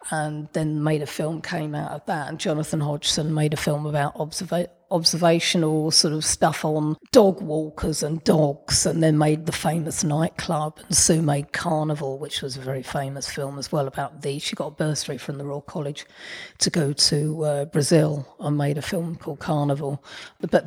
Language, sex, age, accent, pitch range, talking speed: English, female, 40-59, British, 150-175 Hz, 190 wpm